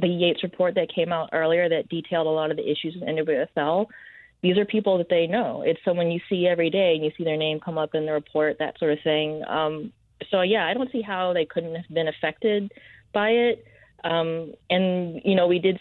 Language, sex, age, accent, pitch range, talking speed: English, female, 30-49, American, 155-180 Hz, 235 wpm